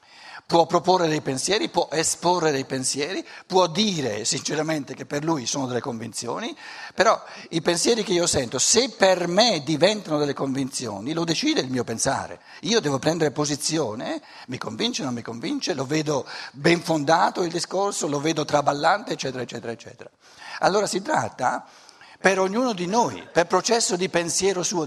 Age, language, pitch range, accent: 60-79, Italian, 145-195 Hz, native